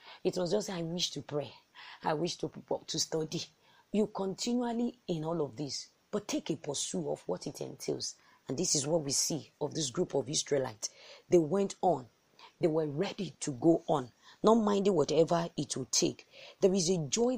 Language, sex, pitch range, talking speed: English, female, 150-205 Hz, 195 wpm